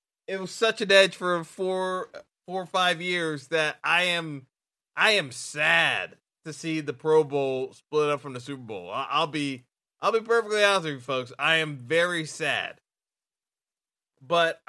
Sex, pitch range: male, 170-245 Hz